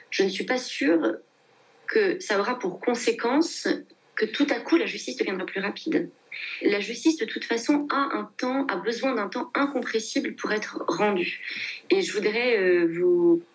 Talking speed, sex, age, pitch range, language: 175 wpm, female, 30-49, 215-345 Hz, French